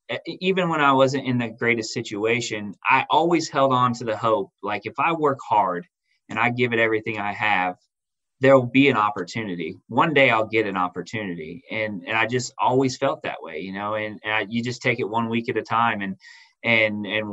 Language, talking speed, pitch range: English, 215 wpm, 110-130 Hz